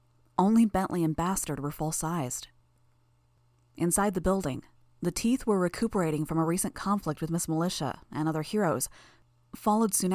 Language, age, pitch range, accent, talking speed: English, 30-49, 145-185 Hz, American, 155 wpm